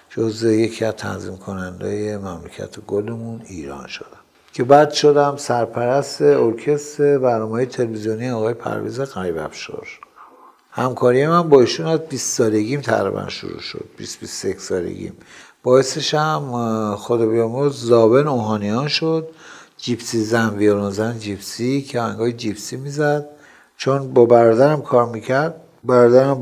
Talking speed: 125 wpm